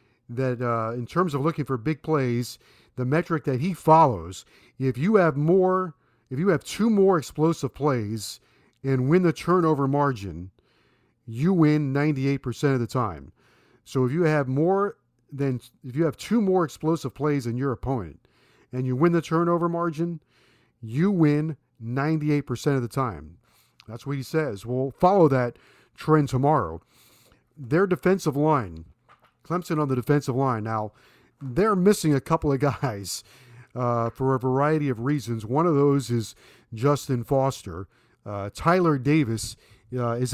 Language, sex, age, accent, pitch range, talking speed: English, male, 50-69, American, 120-155 Hz, 155 wpm